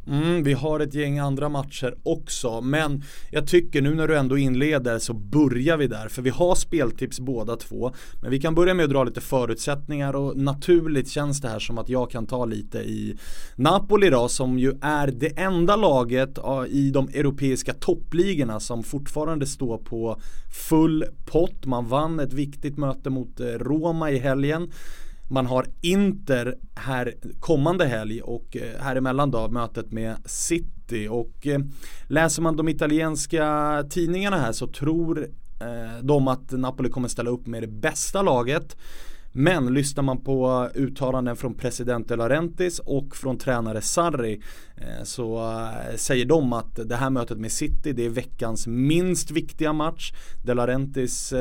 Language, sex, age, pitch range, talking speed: English, male, 30-49, 125-155 Hz, 155 wpm